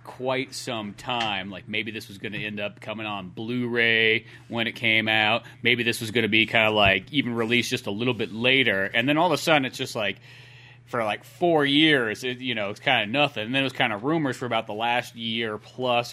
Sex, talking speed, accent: male, 250 wpm, American